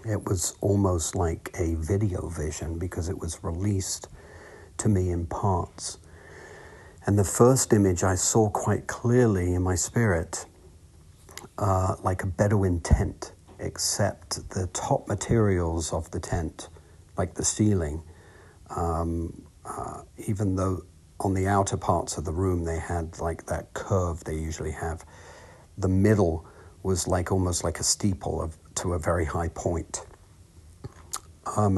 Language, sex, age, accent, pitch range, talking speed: English, male, 50-69, British, 85-100 Hz, 140 wpm